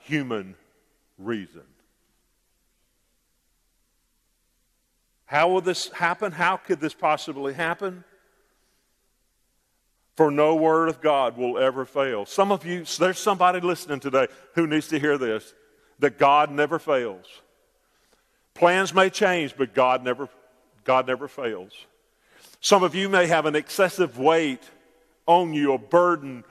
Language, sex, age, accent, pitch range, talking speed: English, male, 50-69, American, 140-180 Hz, 125 wpm